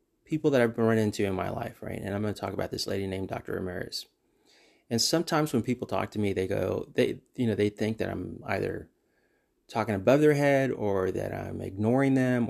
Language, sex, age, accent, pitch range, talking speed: English, male, 30-49, American, 100-125 Hz, 220 wpm